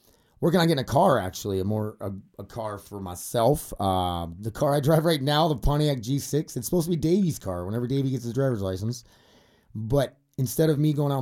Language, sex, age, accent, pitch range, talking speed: English, male, 30-49, American, 90-130 Hz, 220 wpm